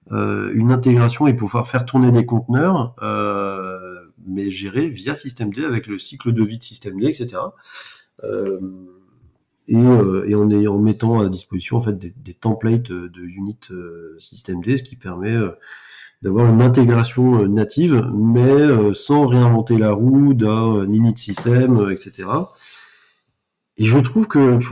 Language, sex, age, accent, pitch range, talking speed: French, male, 40-59, French, 105-135 Hz, 165 wpm